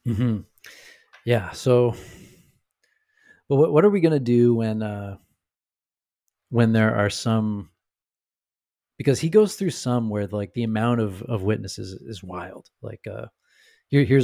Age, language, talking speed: 30-49, English, 155 wpm